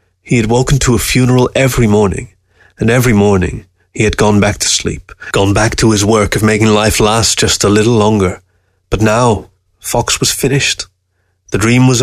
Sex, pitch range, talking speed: male, 95-120 Hz, 190 wpm